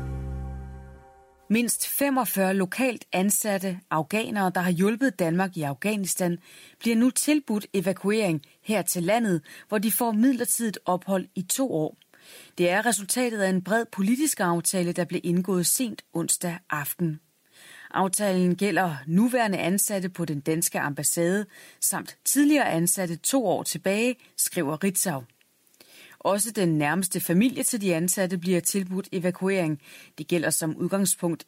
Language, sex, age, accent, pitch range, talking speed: Danish, female, 30-49, native, 165-210 Hz, 135 wpm